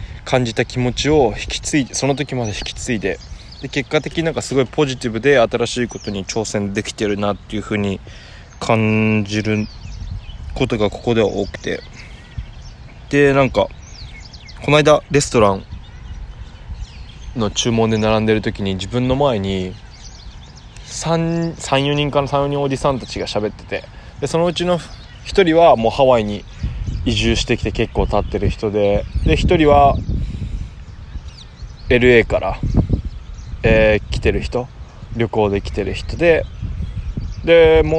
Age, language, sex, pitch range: 20-39, Japanese, male, 100-125 Hz